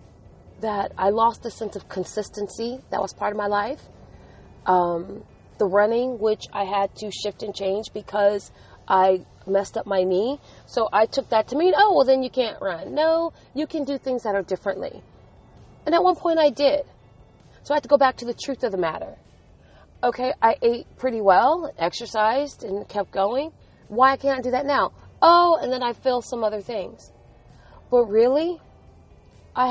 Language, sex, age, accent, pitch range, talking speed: English, female, 30-49, American, 195-255 Hz, 190 wpm